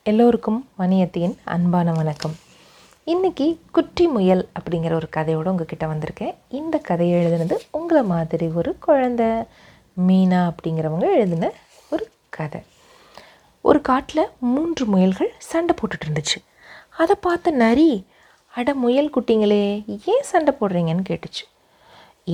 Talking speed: 110 wpm